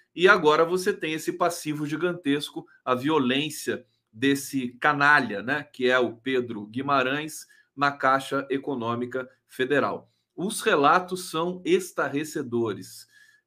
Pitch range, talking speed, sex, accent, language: 125-170 Hz, 110 wpm, male, Brazilian, Portuguese